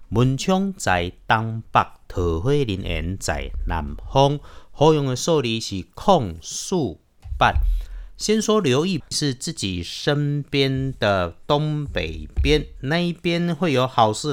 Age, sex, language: 50-69, male, Chinese